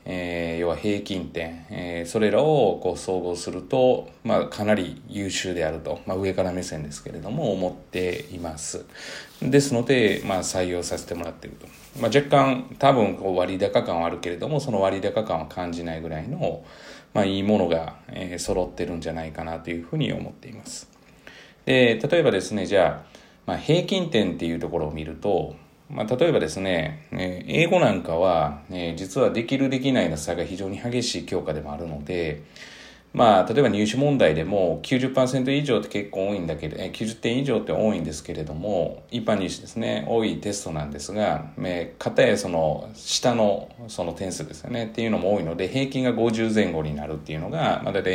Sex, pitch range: male, 85-115 Hz